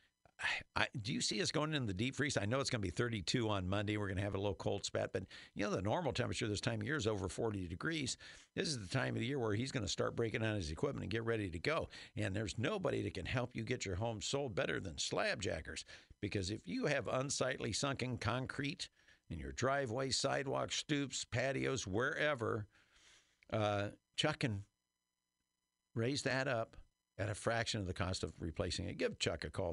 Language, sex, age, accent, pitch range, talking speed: English, male, 50-69, American, 105-150 Hz, 220 wpm